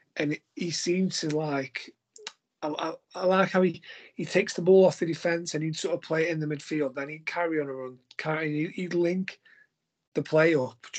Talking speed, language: 230 wpm, English